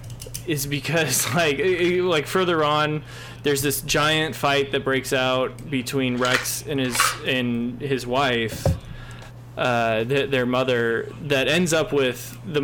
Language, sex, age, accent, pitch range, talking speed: English, male, 20-39, American, 125-155 Hz, 140 wpm